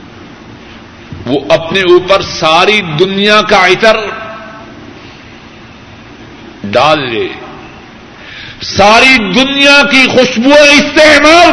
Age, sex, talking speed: 60-79, male, 75 wpm